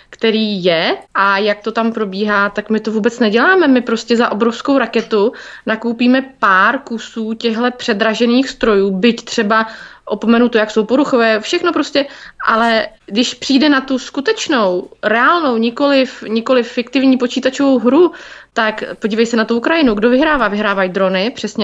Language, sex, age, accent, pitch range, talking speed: Czech, female, 20-39, native, 200-245 Hz, 150 wpm